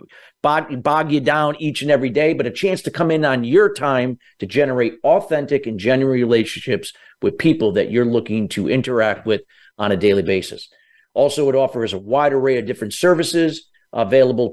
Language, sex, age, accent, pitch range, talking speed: English, male, 50-69, American, 120-150 Hz, 180 wpm